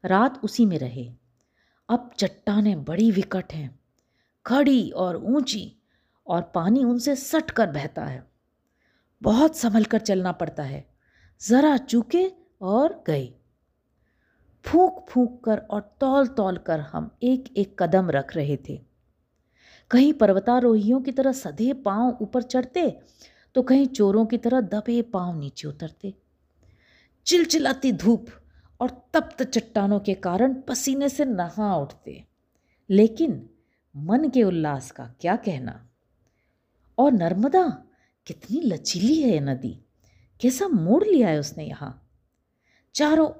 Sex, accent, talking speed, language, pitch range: female, native, 125 wpm, Hindi, 170-260 Hz